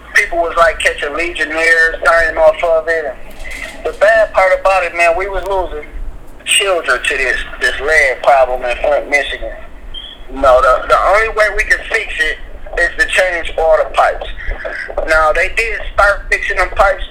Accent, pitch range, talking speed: American, 155-205 Hz, 180 wpm